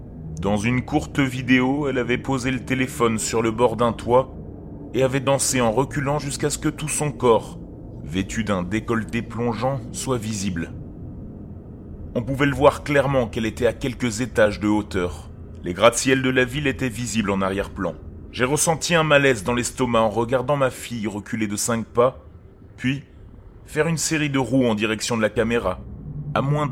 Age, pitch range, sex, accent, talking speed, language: 30-49, 105-135 Hz, male, French, 175 wpm, French